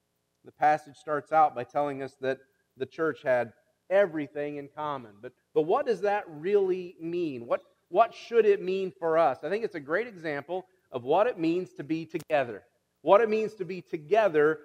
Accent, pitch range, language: American, 155-200 Hz, English